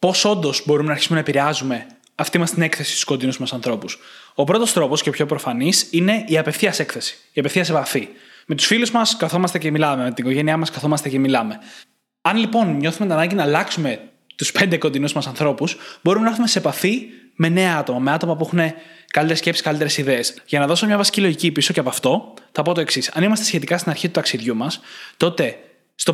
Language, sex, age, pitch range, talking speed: Greek, male, 20-39, 145-185 Hz, 220 wpm